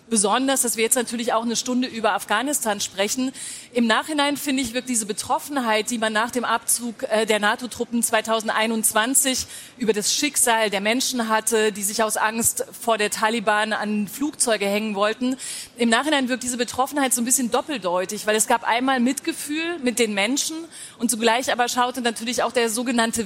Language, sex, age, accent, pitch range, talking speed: German, female, 30-49, German, 215-250 Hz, 175 wpm